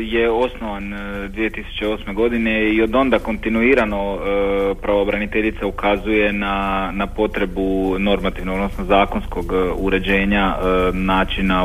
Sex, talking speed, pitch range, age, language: male, 95 wpm, 95-105 Hz, 40-59, Croatian